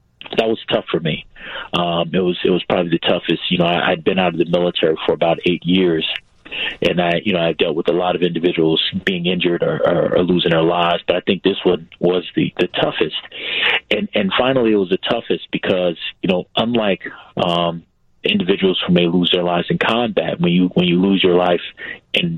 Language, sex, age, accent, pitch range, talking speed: English, male, 40-59, American, 85-95 Hz, 220 wpm